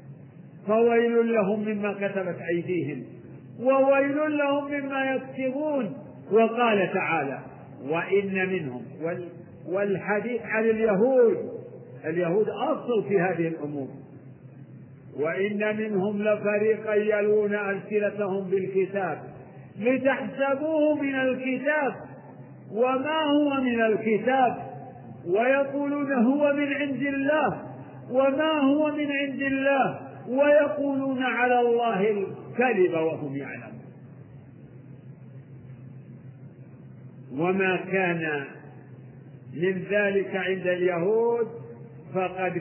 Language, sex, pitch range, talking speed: Arabic, male, 150-225 Hz, 80 wpm